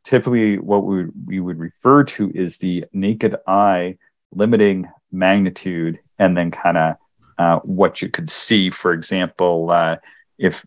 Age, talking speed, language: 40-59, 145 wpm, English